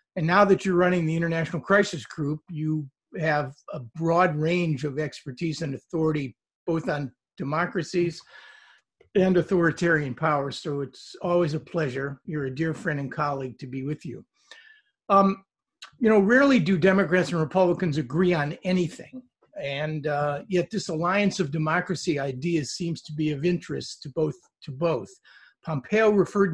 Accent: American